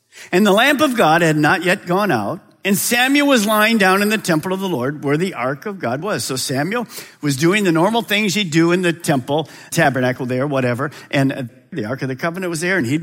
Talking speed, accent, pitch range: 240 wpm, American, 145-230 Hz